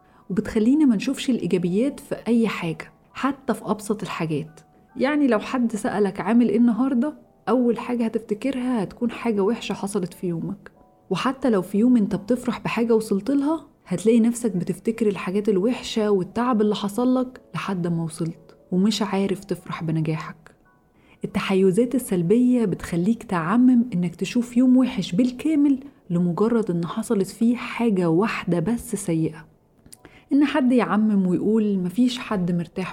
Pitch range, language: 180-240 Hz, Arabic